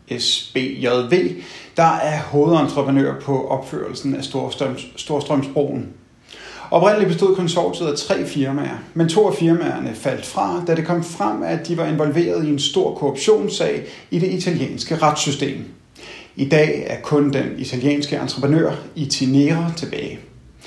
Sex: male